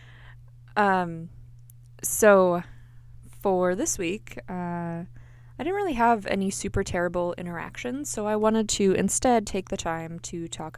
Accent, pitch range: American, 120-185 Hz